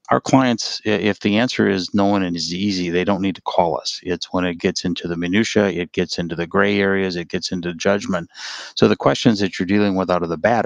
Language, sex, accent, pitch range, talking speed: English, male, American, 85-95 Hz, 250 wpm